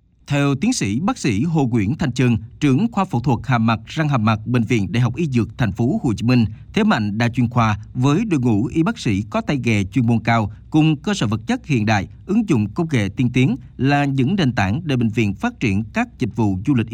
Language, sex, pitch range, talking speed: Vietnamese, male, 115-145 Hz, 260 wpm